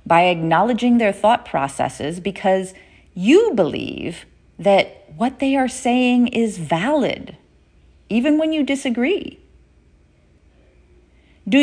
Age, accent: 30-49, American